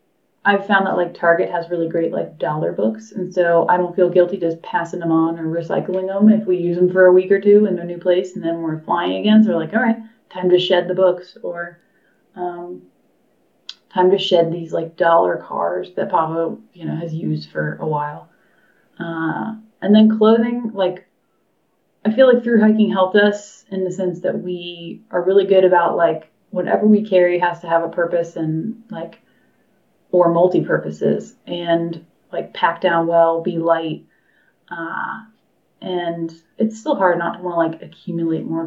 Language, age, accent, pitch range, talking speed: English, 30-49, American, 170-200 Hz, 190 wpm